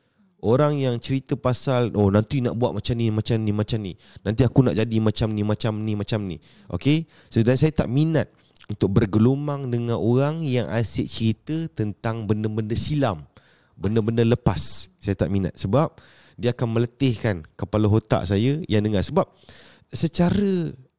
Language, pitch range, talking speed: Hungarian, 100-130 Hz, 160 wpm